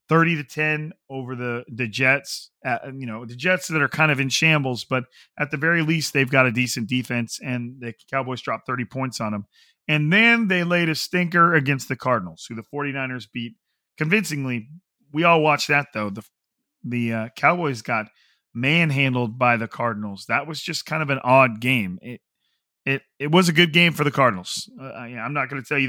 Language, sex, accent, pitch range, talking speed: English, male, American, 125-155 Hz, 210 wpm